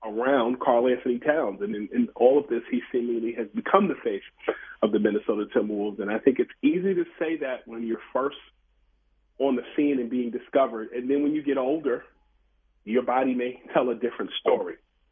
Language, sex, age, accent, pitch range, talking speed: English, male, 40-59, American, 115-150 Hz, 200 wpm